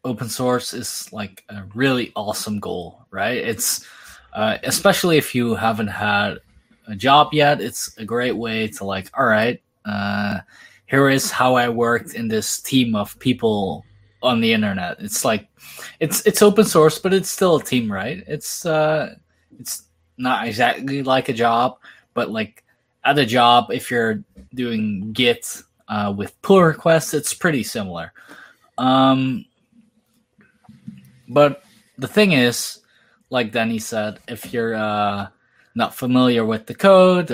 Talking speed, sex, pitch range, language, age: 150 wpm, male, 105-140 Hz, English, 20-39